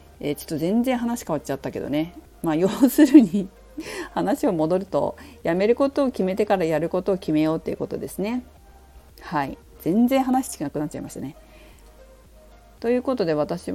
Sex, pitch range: female, 145-215 Hz